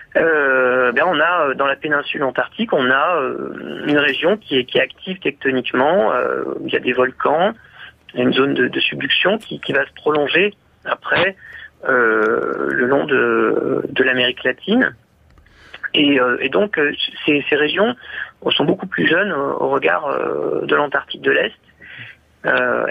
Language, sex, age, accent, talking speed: French, male, 40-59, French, 160 wpm